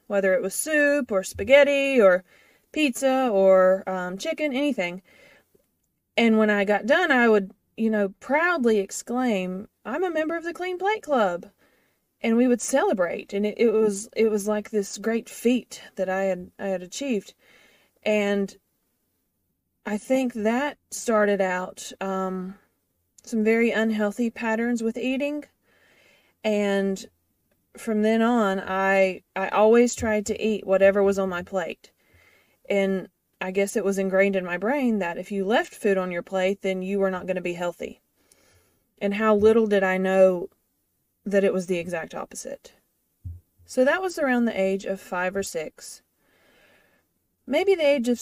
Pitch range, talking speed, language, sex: 190-240 Hz, 160 wpm, English, female